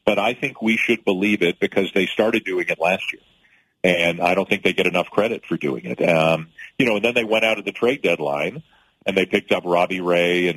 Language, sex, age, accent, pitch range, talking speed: English, male, 40-59, American, 85-110 Hz, 245 wpm